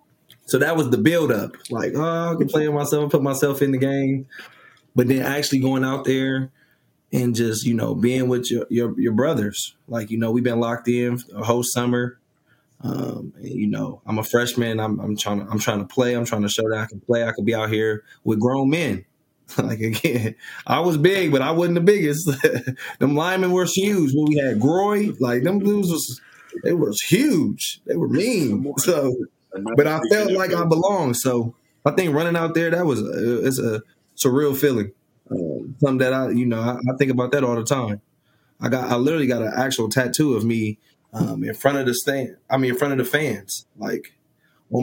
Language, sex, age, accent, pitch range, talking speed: English, male, 20-39, American, 115-145 Hz, 215 wpm